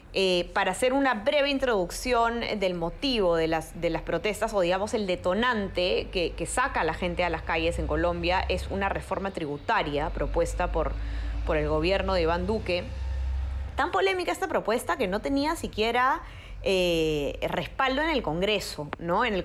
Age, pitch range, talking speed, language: 20-39, 170-215 Hz, 175 wpm, Spanish